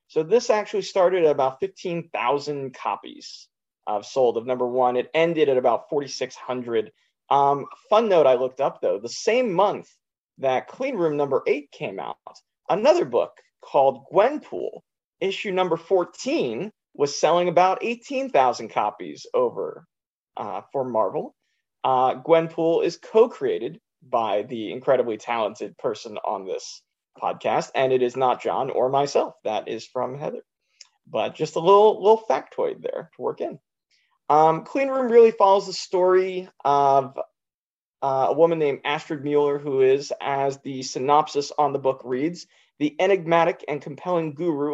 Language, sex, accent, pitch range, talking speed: English, male, American, 140-205 Hz, 155 wpm